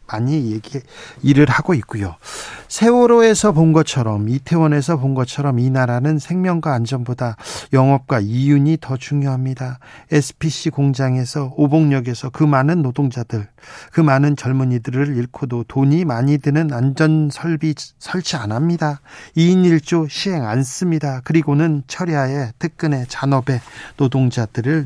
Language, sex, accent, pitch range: Korean, male, native, 130-165 Hz